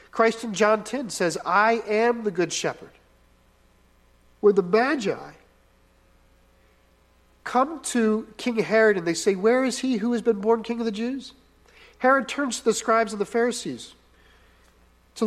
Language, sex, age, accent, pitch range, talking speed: English, male, 40-59, American, 195-240 Hz, 155 wpm